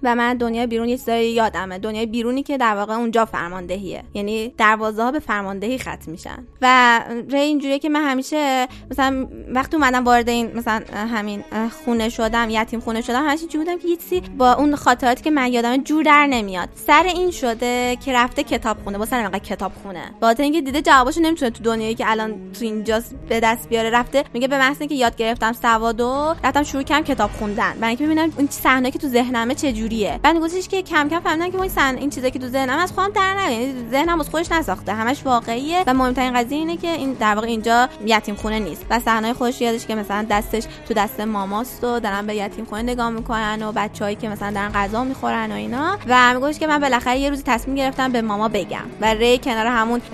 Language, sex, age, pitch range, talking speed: Persian, female, 20-39, 225-275 Hz, 210 wpm